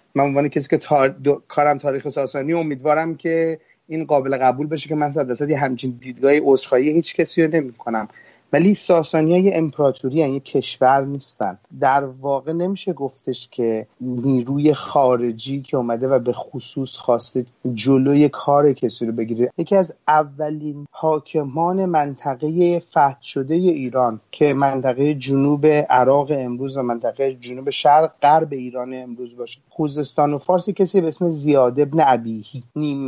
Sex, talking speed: male, 150 wpm